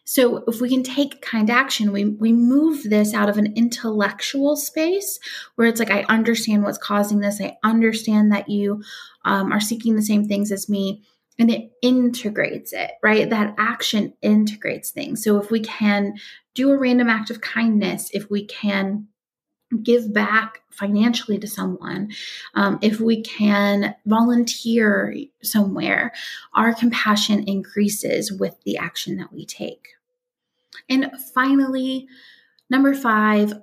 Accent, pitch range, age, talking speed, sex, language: American, 205-245 Hz, 30-49, 145 wpm, female, English